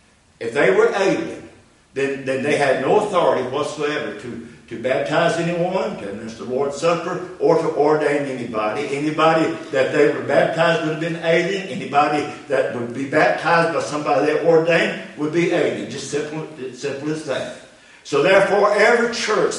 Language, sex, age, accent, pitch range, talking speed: English, male, 60-79, American, 120-165 Hz, 170 wpm